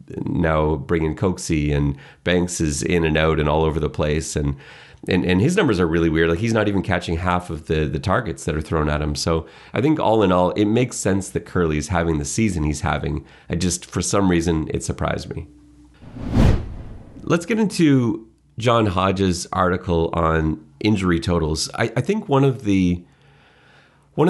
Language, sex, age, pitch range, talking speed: English, male, 30-49, 85-105 Hz, 190 wpm